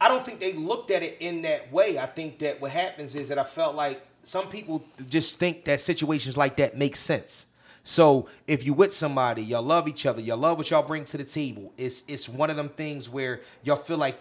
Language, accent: English, American